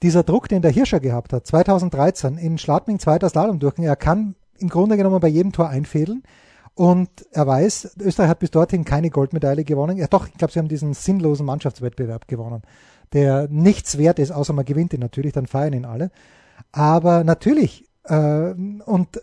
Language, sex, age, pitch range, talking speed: German, male, 30-49, 150-190 Hz, 180 wpm